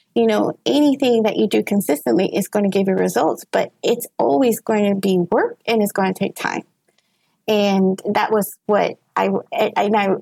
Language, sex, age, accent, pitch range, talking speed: English, female, 30-49, American, 195-230 Hz, 190 wpm